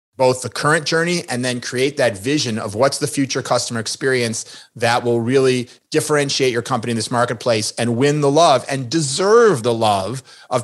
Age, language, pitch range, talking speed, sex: 30-49, English, 120-150 Hz, 185 wpm, male